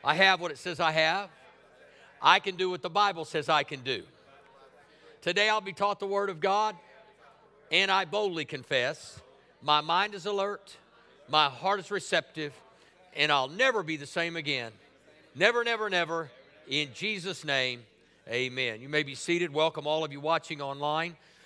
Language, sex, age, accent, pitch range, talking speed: English, male, 50-69, American, 130-165 Hz, 170 wpm